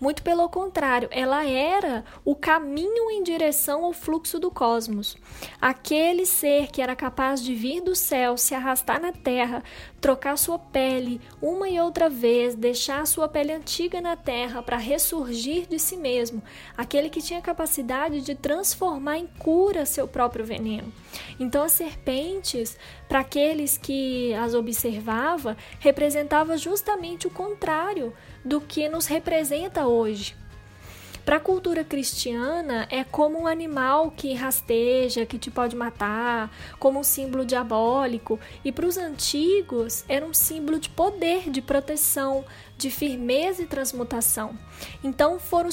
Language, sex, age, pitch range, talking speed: Portuguese, female, 20-39, 250-325 Hz, 140 wpm